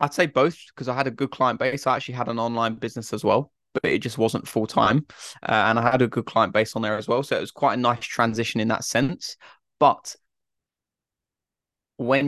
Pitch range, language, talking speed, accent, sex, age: 110-125 Hz, English, 235 wpm, British, male, 20-39